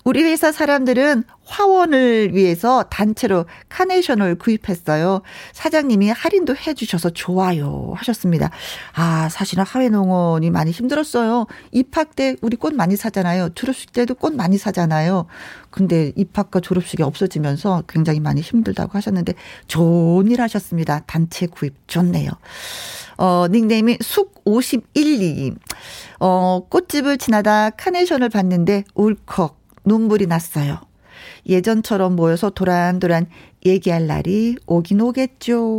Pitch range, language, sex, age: 180-250 Hz, Korean, female, 40-59